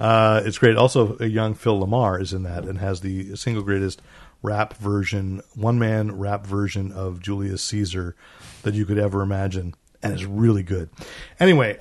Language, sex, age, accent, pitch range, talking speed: English, male, 40-59, American, 100-125 Hz, 180 wpm